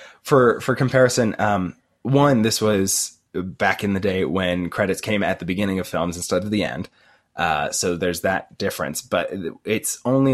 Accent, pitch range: American, 90-115 Hz